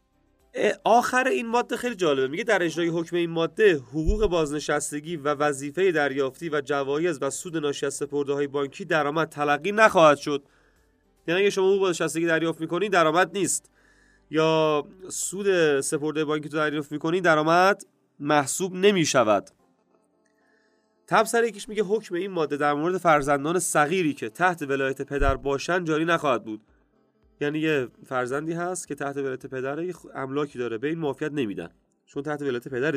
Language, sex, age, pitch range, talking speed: Persian, male, 30-49, 140-180 Hz, 150 wpm